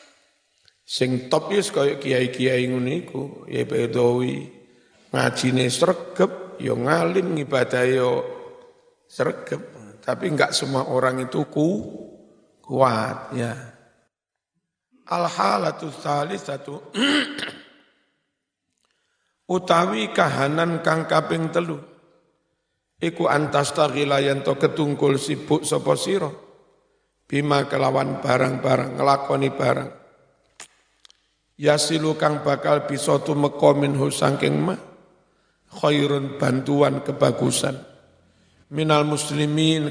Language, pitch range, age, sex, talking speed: Indonesian, 135-165 Hz, 50-69, male, 90 wpm